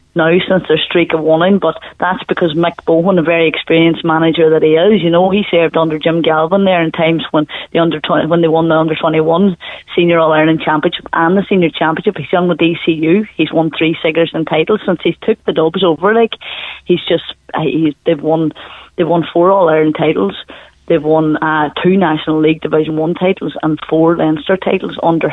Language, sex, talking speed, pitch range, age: English, female, 215 wpm, 160-185 Hz, 30-49